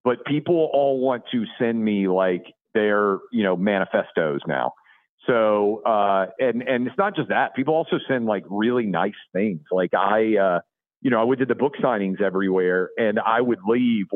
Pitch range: 95-125 Hz